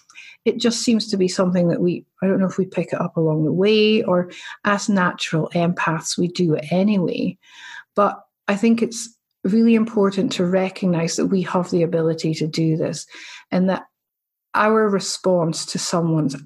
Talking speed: 180 wpm